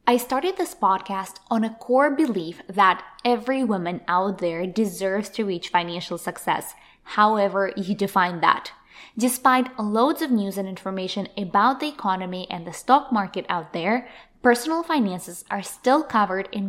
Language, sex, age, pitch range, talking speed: English, female, 10-29, 190-245 Hz, 155 wpm